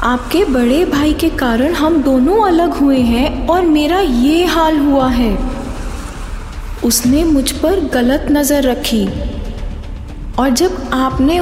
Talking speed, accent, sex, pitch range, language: 130 wpm, native, female, 240-300 Hz, Hindi